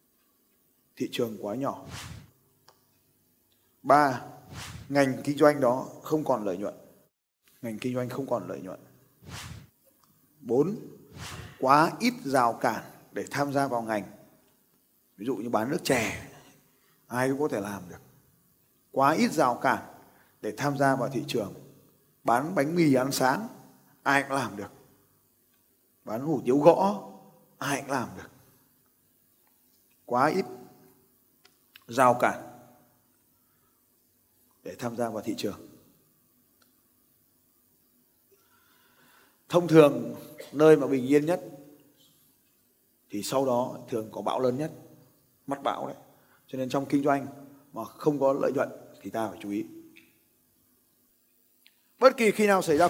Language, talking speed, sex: Vietnamese, 135 wpm, male